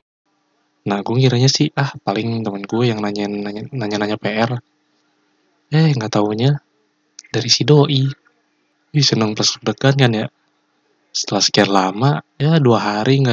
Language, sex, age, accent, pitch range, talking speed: Indonesian, male, 20-39, native, 110-140 Hz, 130 wpm